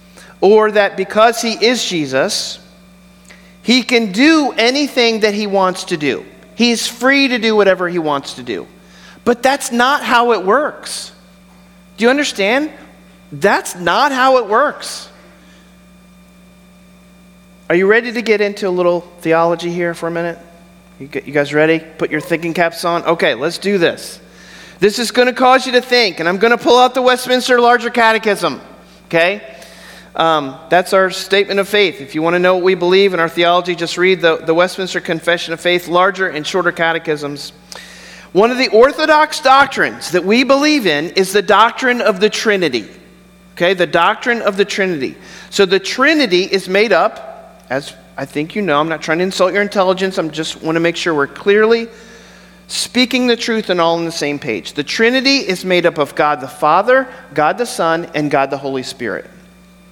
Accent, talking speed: American, 185 wpm